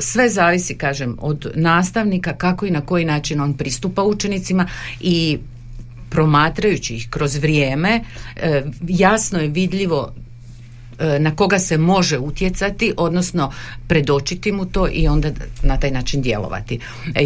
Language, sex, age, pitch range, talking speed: Croatian, female, 50-69, 145-185 Hz, 130 wpm